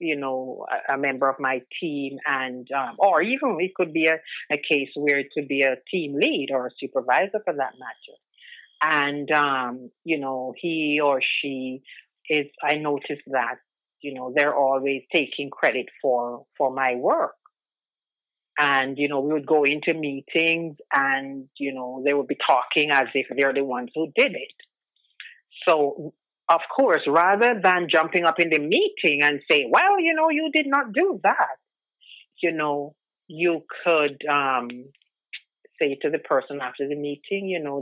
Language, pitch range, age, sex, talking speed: English, 135-165 Hz, 40-59, female, 170 wpm